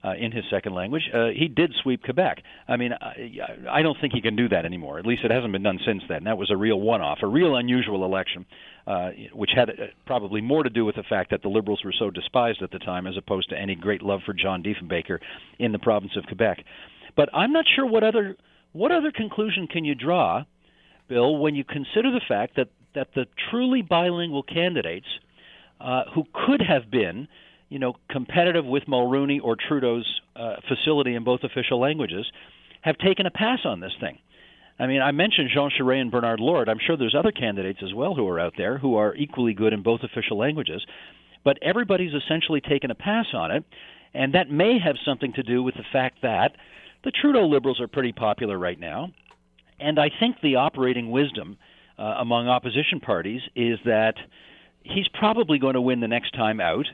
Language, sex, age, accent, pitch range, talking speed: English, male, 50-69, American, 110-155 Hz, 210 wpm